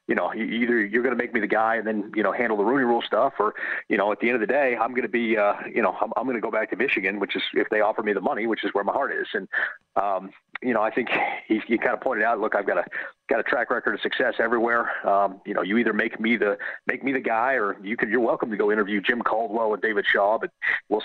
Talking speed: 305 wpm